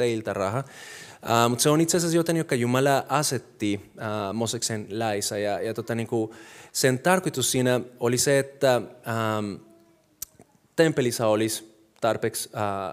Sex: male